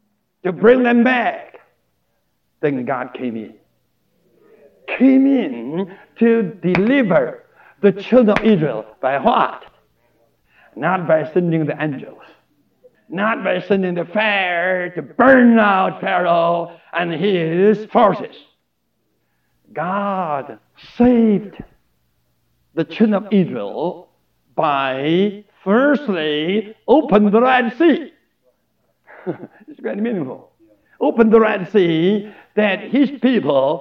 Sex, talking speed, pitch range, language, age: male, 100 wpm, 170-240 Hz, English, 60-79